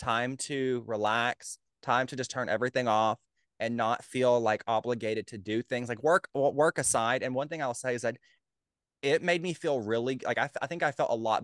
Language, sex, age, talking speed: English, male, 20-39, 215 wpm